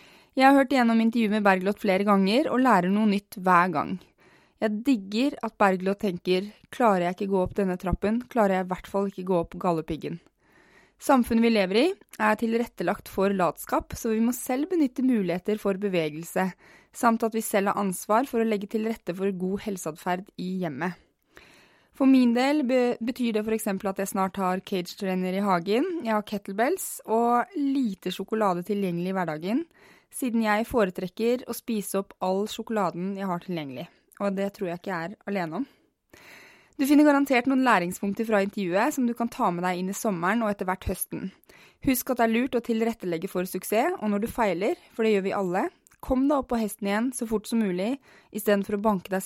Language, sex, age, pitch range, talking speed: English, female, 20-39, 185-235 Hz, 200 wpm